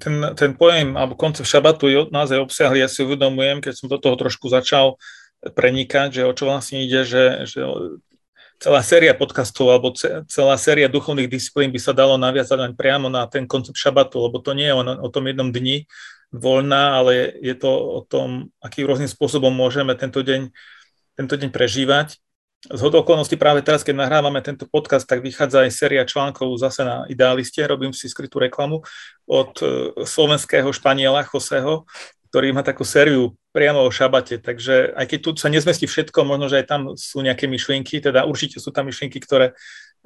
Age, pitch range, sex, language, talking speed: 30-49, 130-145 Hz, male, Slovak, 175 wpm